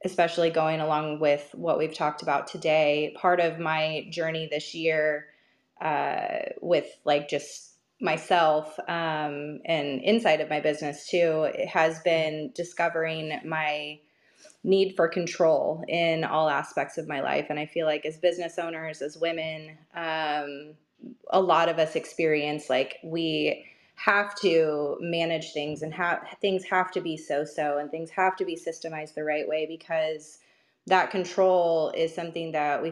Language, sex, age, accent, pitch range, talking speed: English, female, 20-39, American, 155-175 Hz, 155 wpm